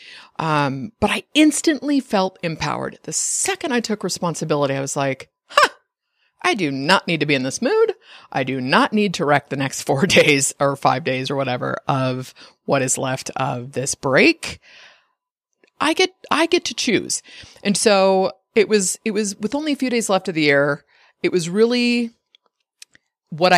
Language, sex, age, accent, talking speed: English, female, 30-49, American, 180 wpm